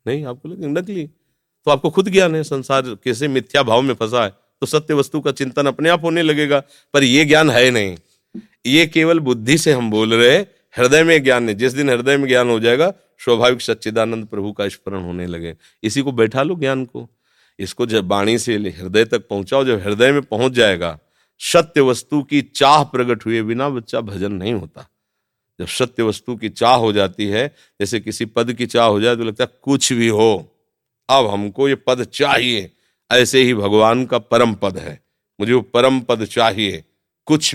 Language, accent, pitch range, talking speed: Hindi, native, 100-135 Hz, 195 wpm